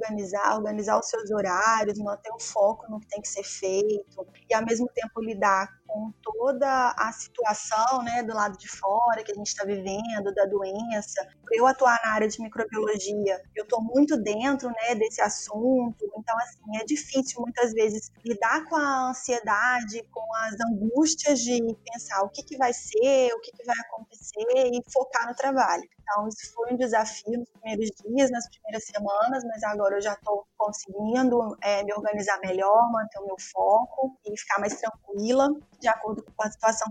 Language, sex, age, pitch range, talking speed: Portuguese, female, 20-39, 210-250 Hz, 180 wpm